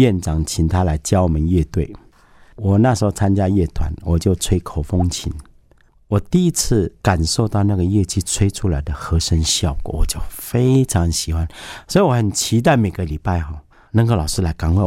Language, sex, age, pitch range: Chinese, male, 50-69, 85-105 Hz